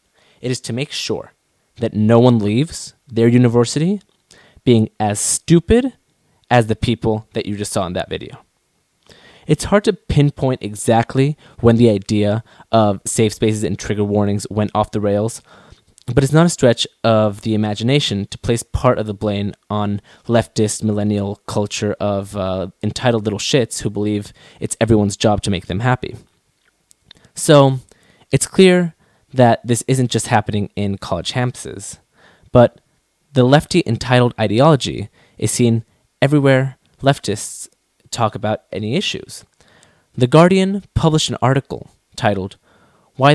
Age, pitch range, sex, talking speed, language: 20-39, 105-135 Hz, male, 145 wpm, English